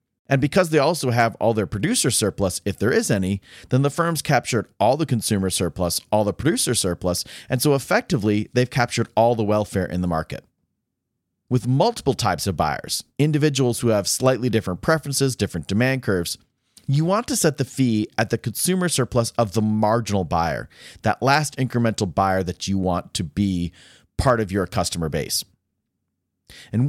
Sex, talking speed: male, 175 wpm